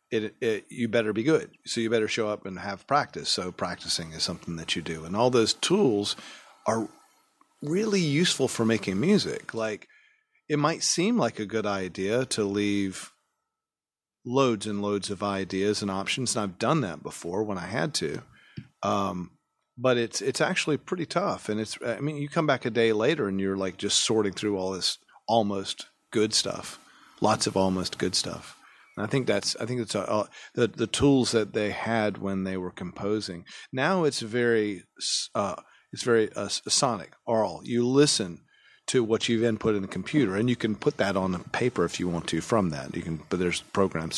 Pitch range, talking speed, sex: 95-120 Hz, 195 wpm, male